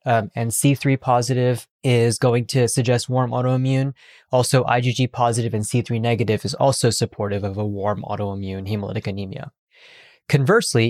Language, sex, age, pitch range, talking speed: English, male, 20-39, 115-140 Hz, 140 wpm